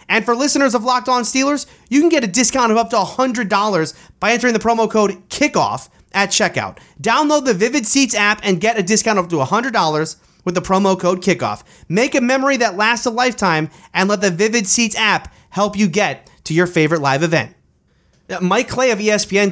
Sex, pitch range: male, 135-200 Hz